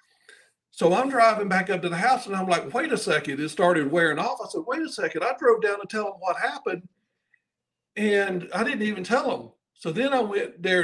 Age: 60-79